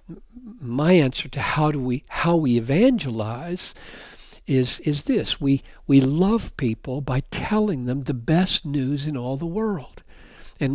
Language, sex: English, male